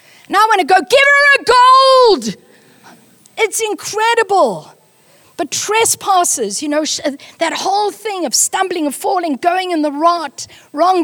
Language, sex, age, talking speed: English, female, 50-69, 140 wpm